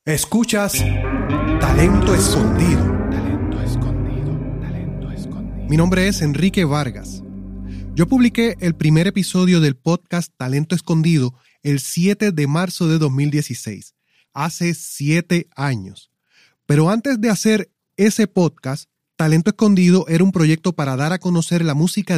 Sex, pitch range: male, 140-190 Hz